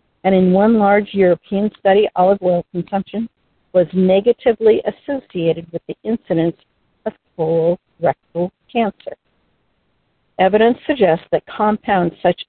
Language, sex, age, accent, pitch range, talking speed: English, female, 60-79, American, 170-200 Hz, 110 wpm